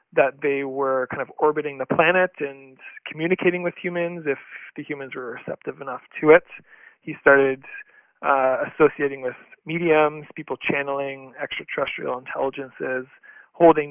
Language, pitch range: English, 140-170 Hz